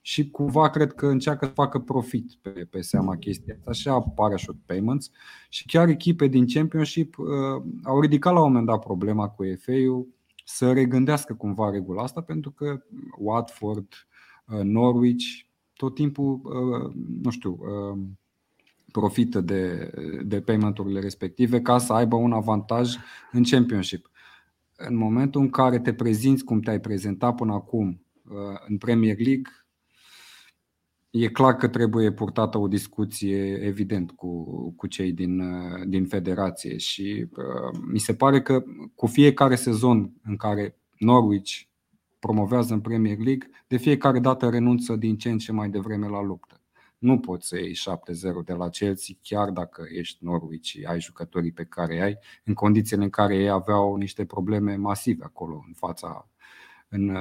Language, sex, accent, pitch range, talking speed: Romanian, male, native, 100-125 Hz, 145 wpm